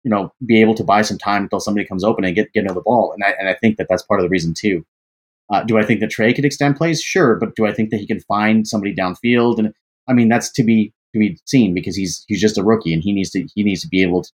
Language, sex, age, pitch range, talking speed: English, male, 30-49, 95-120 Hz, 310 wpm